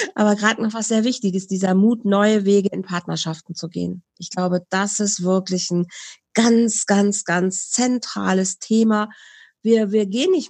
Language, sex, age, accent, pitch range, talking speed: German, female, 40-59, German, 180-220 Hz, 165 wpm